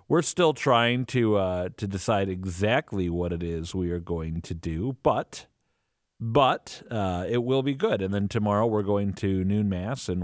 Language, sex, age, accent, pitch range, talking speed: English, male, 50-69, American, 90-130 Hz, 190 wpm